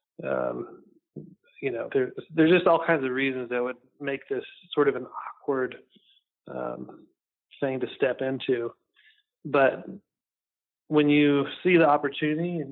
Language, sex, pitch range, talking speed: English, male, 130-175 Hz, 140 wpm